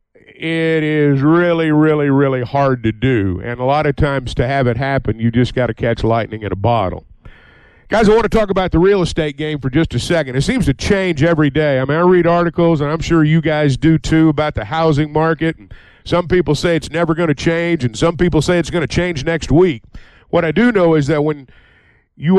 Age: 50-69